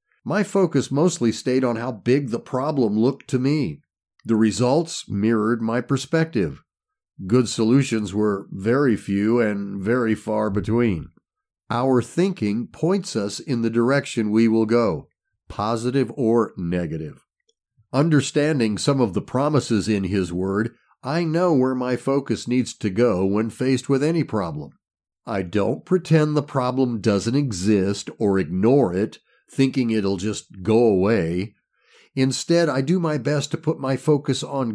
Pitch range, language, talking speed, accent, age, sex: 110-150 Hz, English, 145 wpm, American, 50-69, male